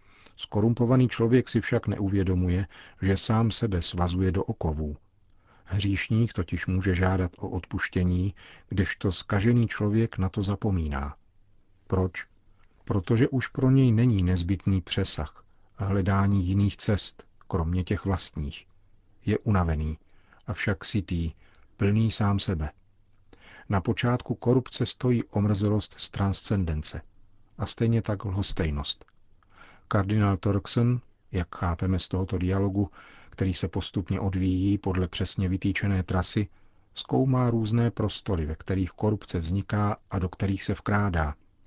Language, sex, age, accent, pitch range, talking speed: Czech, male, 40-59, native, 90-105 Hz, 120 wpm